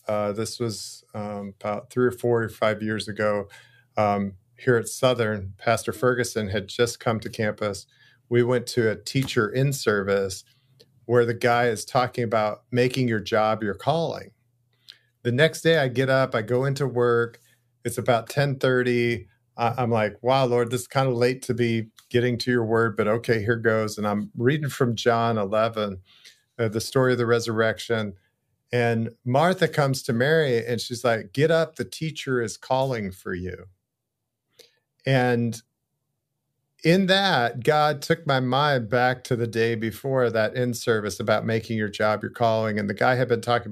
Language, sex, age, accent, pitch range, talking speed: English, male, 50-69, American, 110-130 Hz, 175 wpm